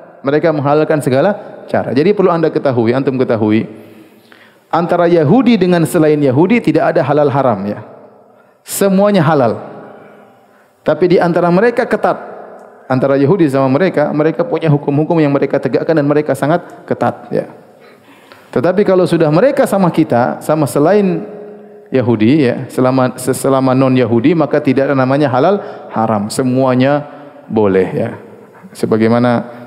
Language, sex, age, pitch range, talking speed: Indonesian, male, 30-49, 125-175 Hz, 135 wpm